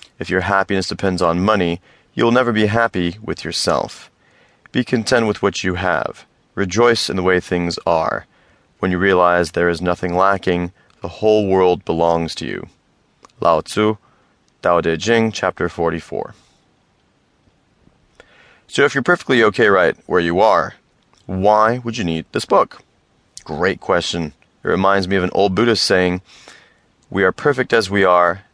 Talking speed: 160 wpm